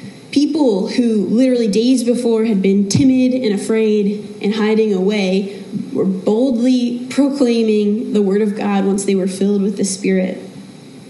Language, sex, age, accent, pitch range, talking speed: English, female, 20-39, American, 205-240 Hz, 145 wpm